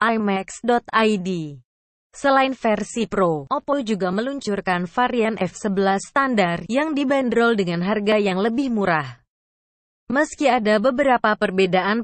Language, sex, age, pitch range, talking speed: Indonesian, female, 20-39, 195-260 Hz, 105 wpm